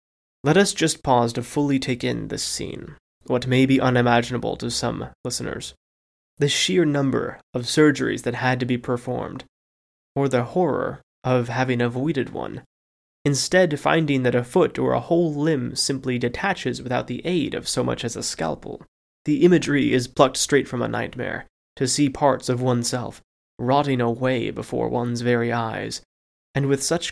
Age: 20-39